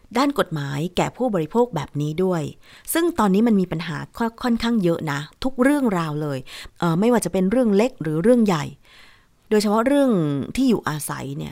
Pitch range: 160-220 Hz